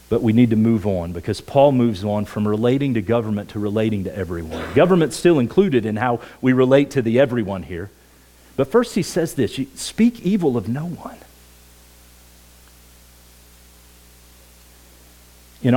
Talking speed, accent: 150 wpm, American